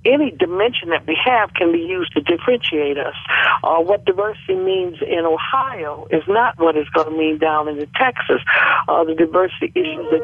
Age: 60-79